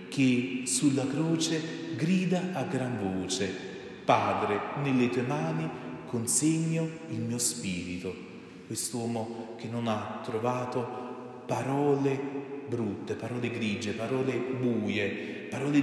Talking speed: 100 wpm